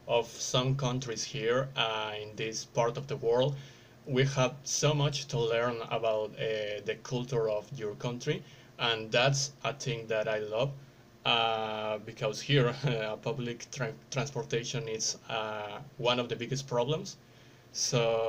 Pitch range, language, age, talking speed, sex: 115-140 Hz, Spanish, 20-39, 150 wpm, male